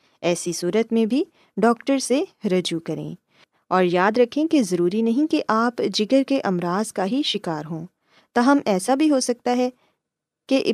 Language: Urdu